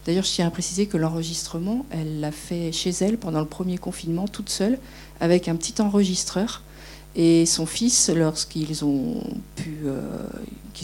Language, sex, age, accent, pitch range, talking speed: French, female, 50-69, French, 155-190 Hz, 150 wpm